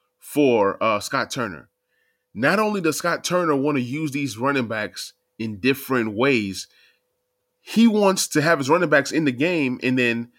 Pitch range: 115-155 Hz